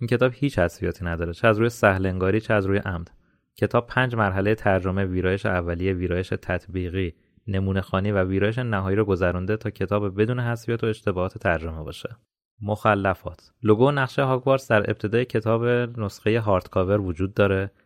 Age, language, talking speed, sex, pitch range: 30-49, Persian, 160 wpm, male, 95-120 Hz